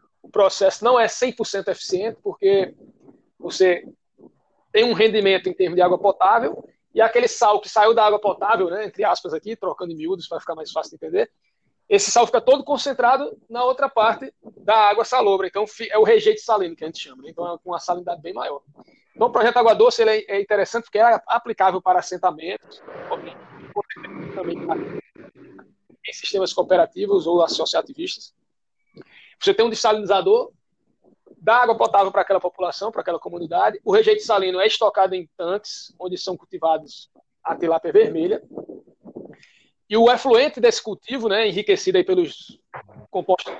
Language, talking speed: Portuguese, 160 wpm